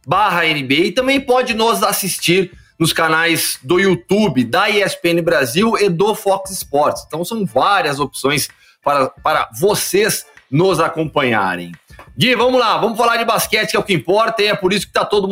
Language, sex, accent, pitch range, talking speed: Portuguese, male, Brazilian, 130-190 Hz, 180 wpm